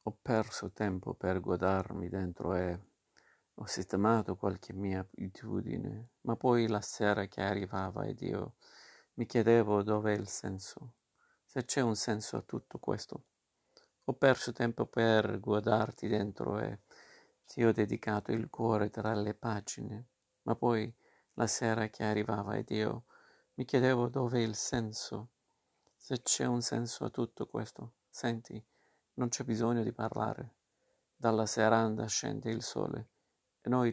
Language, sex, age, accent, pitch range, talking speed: Italian, male, 50-69, native, 105-120 Hz, 140 wpm